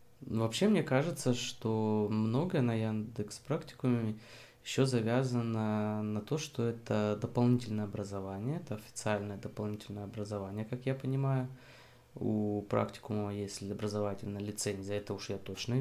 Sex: male